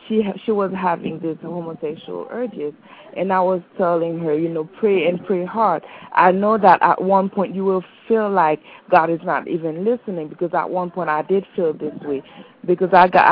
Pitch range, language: 170-210 Hz, English